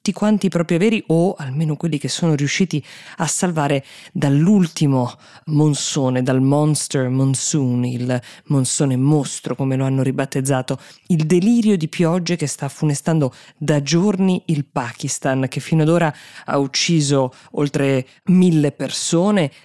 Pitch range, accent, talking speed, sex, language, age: 135-165 Hz, native, 130 wpm, female, Italian, 20-39